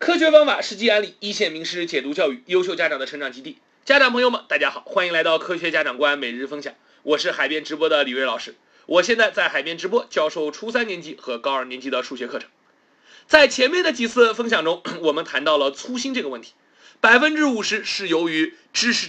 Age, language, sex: 30-49, Chinese, male